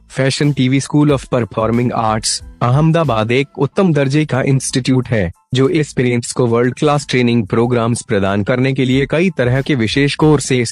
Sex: male